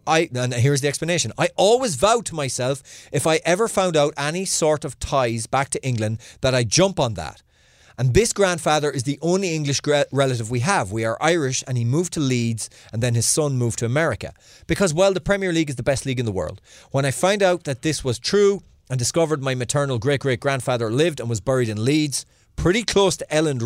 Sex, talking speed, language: male, 225 wpm, English